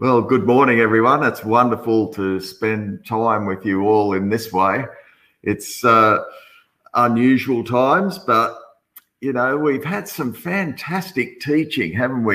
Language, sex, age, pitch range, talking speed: English, male, 50-69, 100-125 Hz, 140 wpm